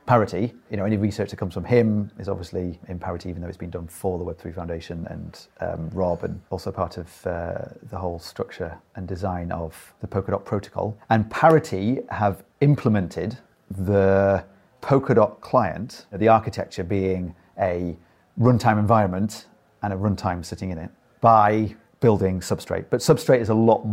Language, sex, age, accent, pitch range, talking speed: English, male, 30-49, British, 90-110 Hz, 165 wpm